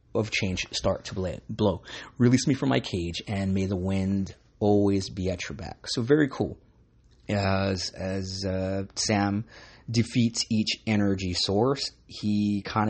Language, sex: English, male